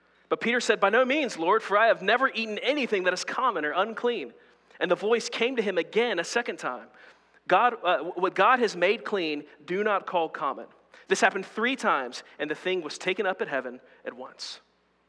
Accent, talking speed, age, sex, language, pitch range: American, 210 wpm, 30-49, male, English, 150-215 Hz